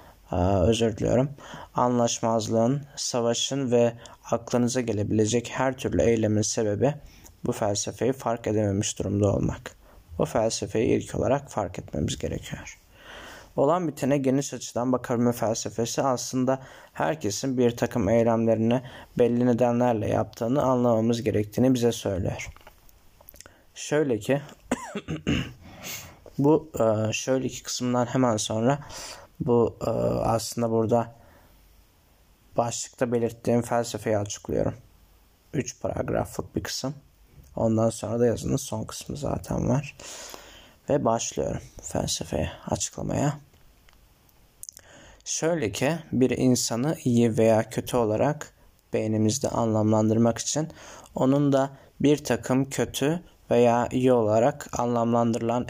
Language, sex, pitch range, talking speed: Turkish, male, 110-130 Hz, 100 wpm